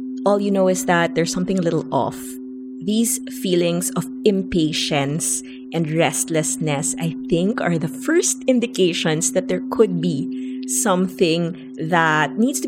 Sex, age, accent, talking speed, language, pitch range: female, 20-39, Filipino, 140 wpm, English, 160-235 Hz